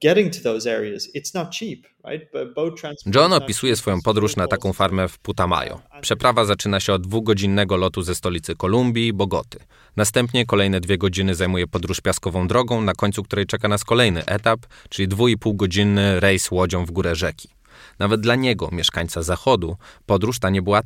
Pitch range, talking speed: 95-115 Hz, 150 wpm